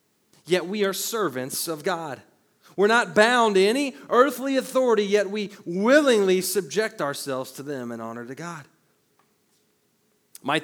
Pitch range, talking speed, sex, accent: 135-215 Hz, 140 wpm, male, American